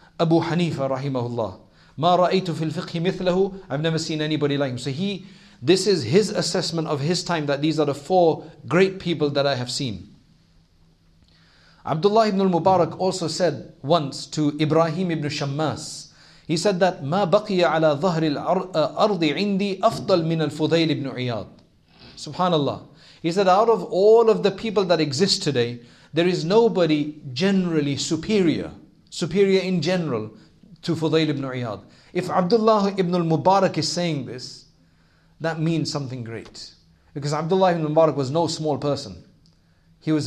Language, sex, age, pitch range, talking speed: English, male, 40-59, 140-180 Hz, 135 wpm